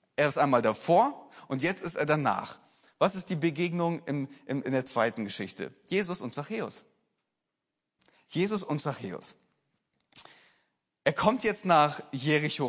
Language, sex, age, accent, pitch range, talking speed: German, male, 30-49, German, 150-195 Hz, 140 wpm